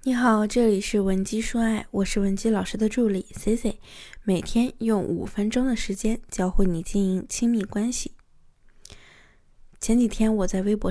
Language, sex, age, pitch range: Chinese, female, 20-39, 195-230 Hz